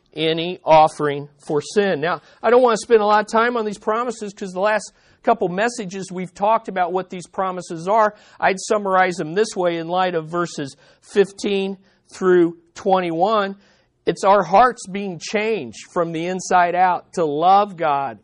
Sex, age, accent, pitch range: male, 50-69, American, 170-220 Hz